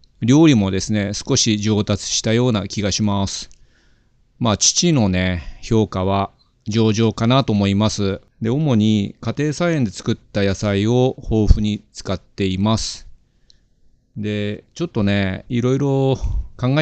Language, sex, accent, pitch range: Japanese, male, native, 100-120 Hz